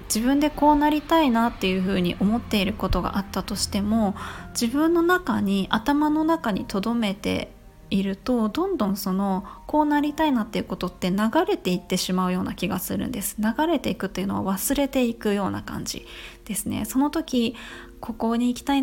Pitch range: 200-265 Hz